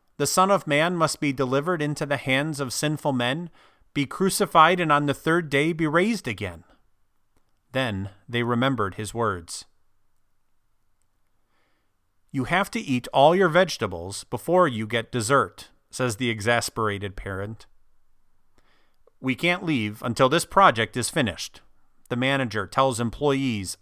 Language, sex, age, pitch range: English, male, 40-59, 105-160 Hz